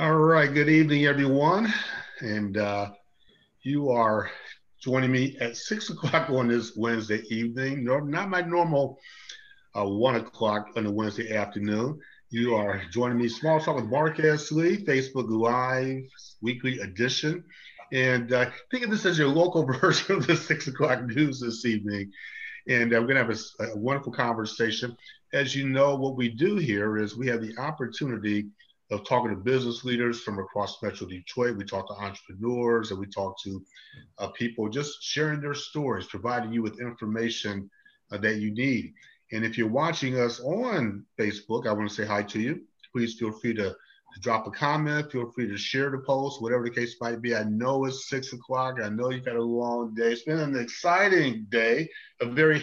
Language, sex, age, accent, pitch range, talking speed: English, male, 50-69, American, 110-145 Hz, 185 wpm